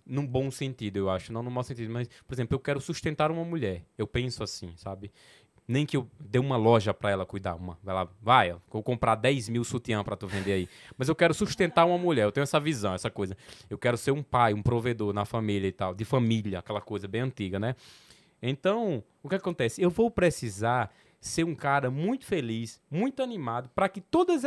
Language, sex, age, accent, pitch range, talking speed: Portuguese, male, 20-39, Brazilian, 115-170 Hz, 225 wpm